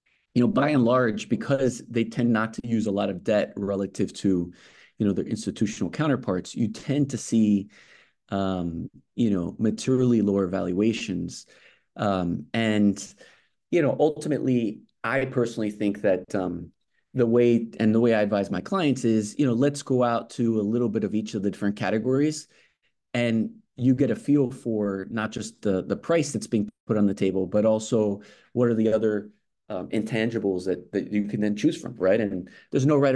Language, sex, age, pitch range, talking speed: English, male, 30-49, 100-120 Hz, 190 wpm